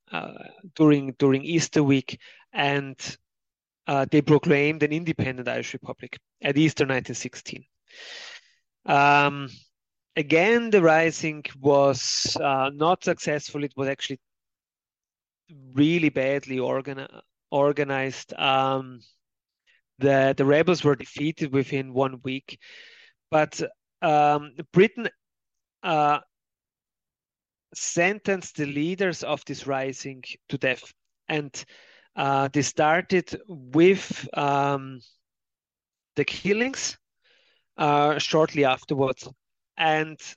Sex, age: male, 30-49